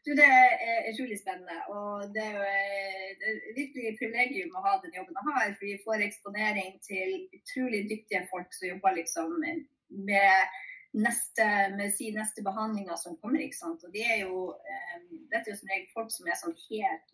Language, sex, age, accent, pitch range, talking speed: English, female, 30-49, Swedish, 195-320 Hz, 170 wpm